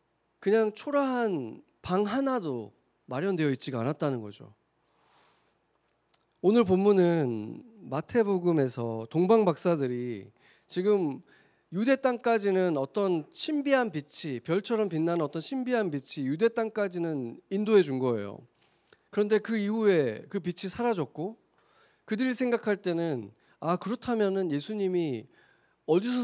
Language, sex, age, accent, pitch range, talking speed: English, male, 40-59, Korean, 145-225 Hz, 95 wpm